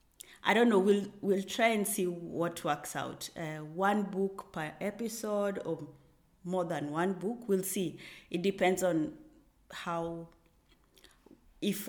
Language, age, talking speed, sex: English, 30-49, 140 wpm, female